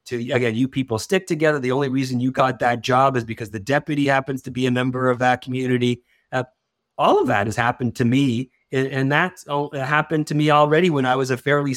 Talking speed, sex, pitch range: 235 wpm, male, 115-150 Hz